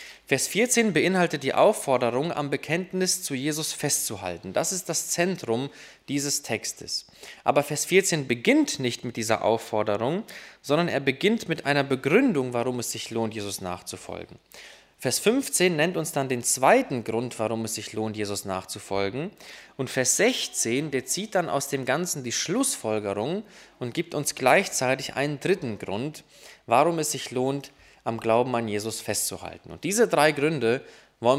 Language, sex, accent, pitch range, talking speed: German, male, German, 120-165 Hz, 155 wpm